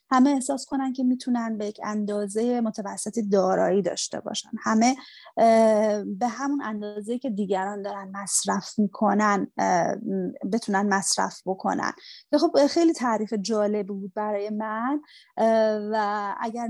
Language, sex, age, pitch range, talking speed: Persian, female, 30-49, 210-260 Hz, 120 wpm